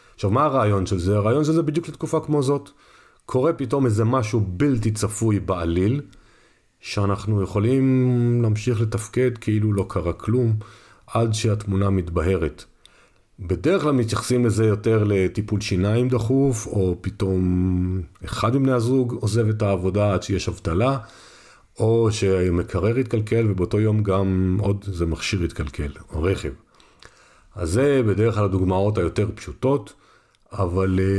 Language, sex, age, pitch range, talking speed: Hebrew, male, 40-59, 100-120 Hz, 135 wpm